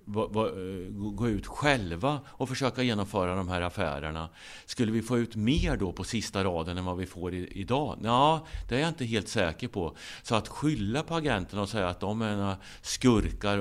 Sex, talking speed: male, 200 wpm